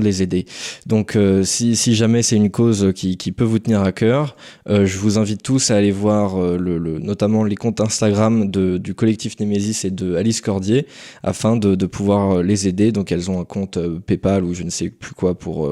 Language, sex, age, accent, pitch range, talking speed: French, male, 20-39, French, 95-115 Hz, 230 wpm